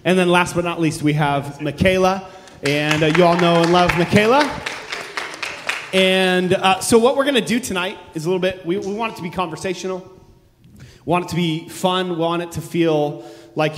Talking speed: 205 wpm